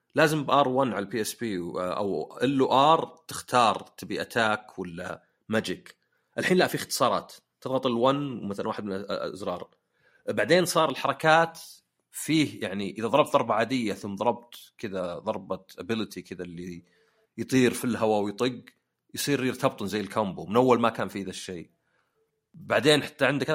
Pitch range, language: 100-160 Hz, Arabic